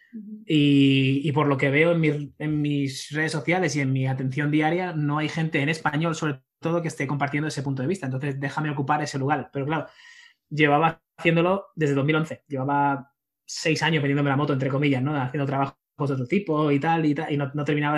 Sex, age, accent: male, 20-39, Spanish